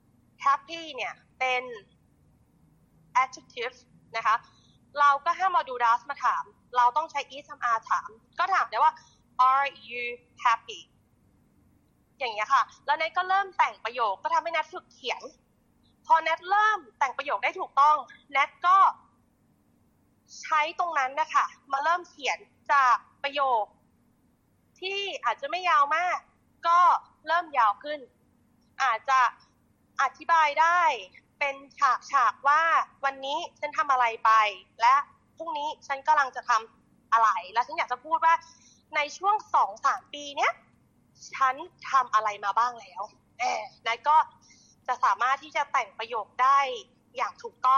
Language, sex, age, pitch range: Thai, female, 20-39, 260-350 Hz